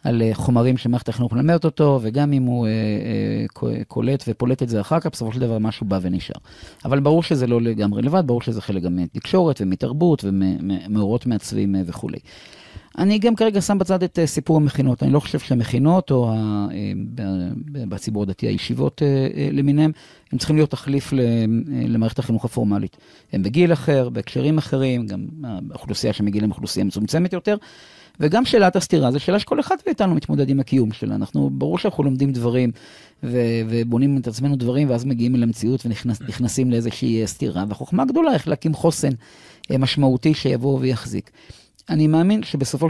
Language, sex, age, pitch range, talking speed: Hebrew, male, 40-59, 110-145 Hz, 155 wpm